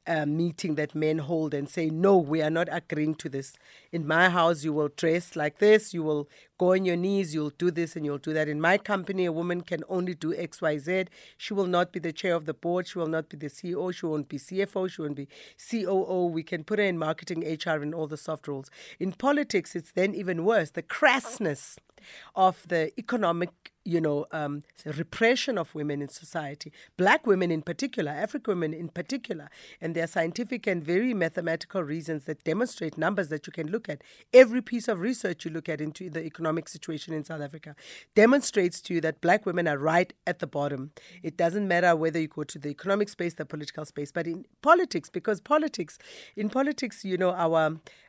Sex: female